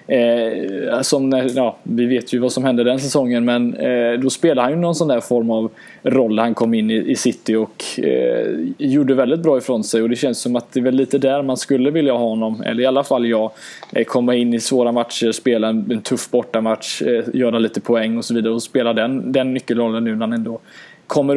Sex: male